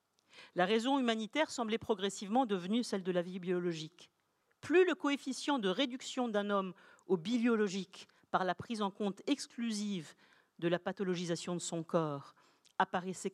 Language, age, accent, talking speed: French, 50-69, French, 150 wpm